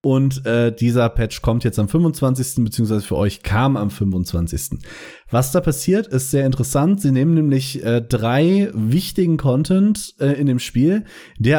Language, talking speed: German, 165 wpm